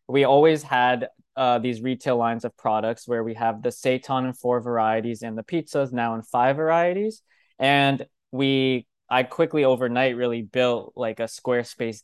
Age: 20-39